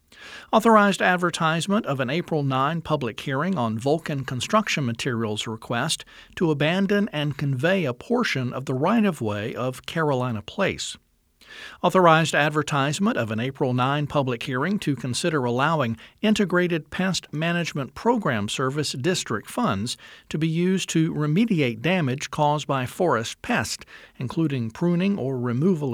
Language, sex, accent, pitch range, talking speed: English, male, American, 130-180 Hz, 135 wpm